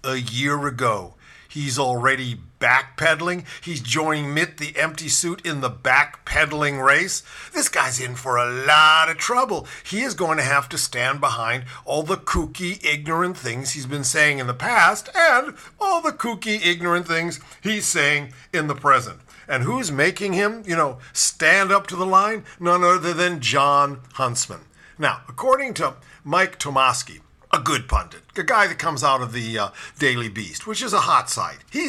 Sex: male